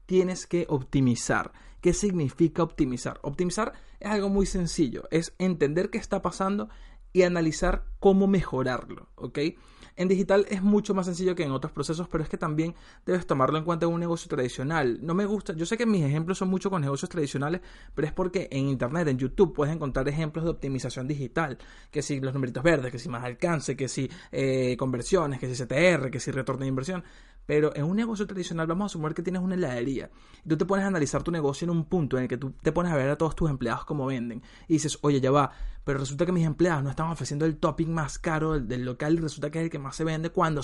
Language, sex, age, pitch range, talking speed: Spanish, male, 20-39, 140-180 Hz, 230 wpm